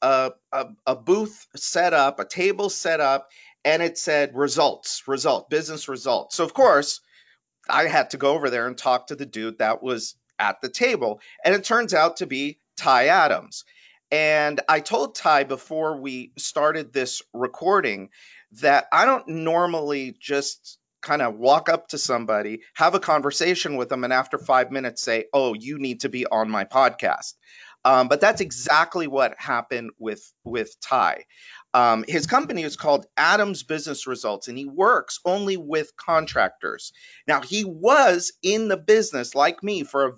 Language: English